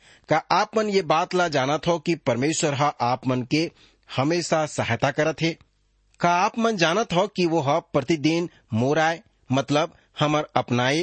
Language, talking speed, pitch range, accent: English, 165 wpm, 130-175 Hz, Indian